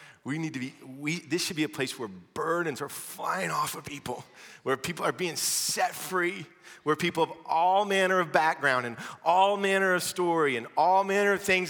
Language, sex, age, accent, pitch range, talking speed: English, male, 30-49, American, 135-180 Hz, 200 wpm